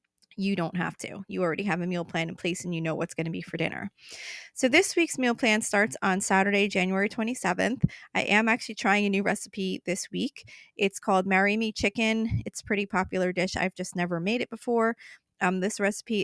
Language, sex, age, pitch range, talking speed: English, female, 20-39, 185-230 Hz, 215 wpm